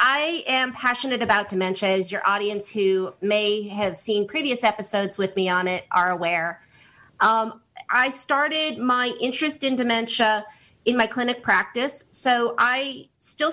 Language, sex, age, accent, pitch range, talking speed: English, female, 40-59, American, 195-240 Hz, 150 wpm